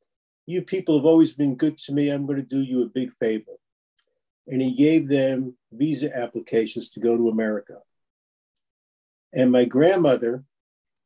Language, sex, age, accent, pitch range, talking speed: English, male, 50-69, American, 125-145 Hz, 150 wpm